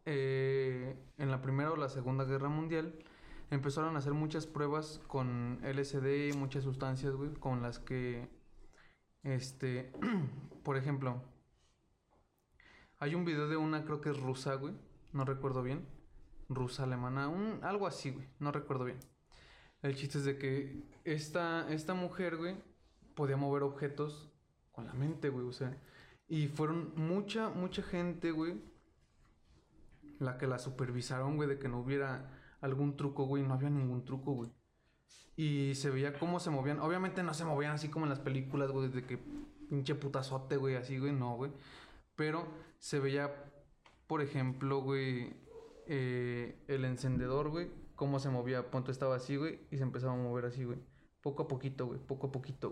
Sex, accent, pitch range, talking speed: male, Mexican, 130-155 Hz, 165 wpm